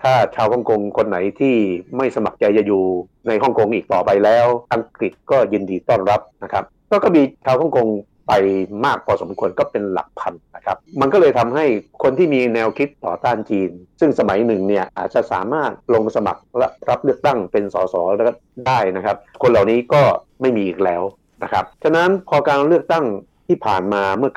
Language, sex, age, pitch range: Thai, male, 60-79, 95-135 Hz